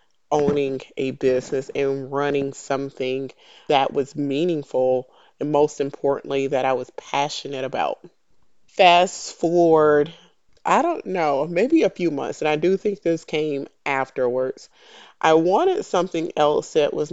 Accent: American